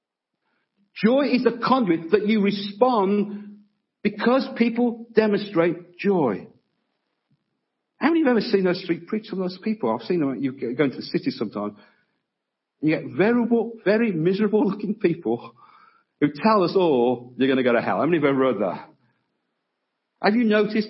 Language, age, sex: English, 50-69, male